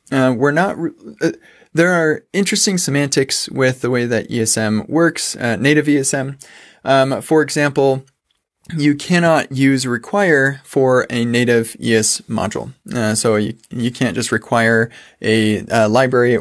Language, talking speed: English, 145 wpm